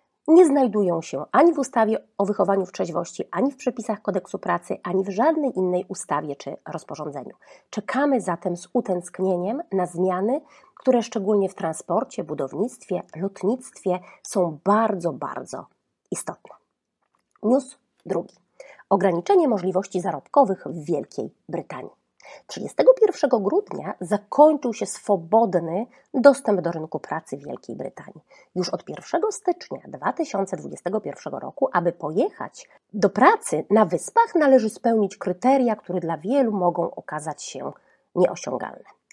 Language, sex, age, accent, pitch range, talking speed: Polish, female, 30-49, native, 185-275 Hz, 125 wpm